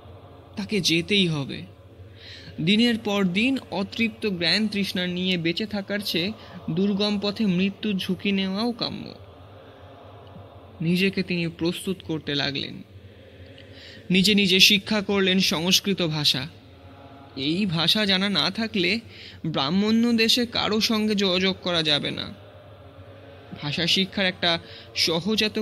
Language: Bengali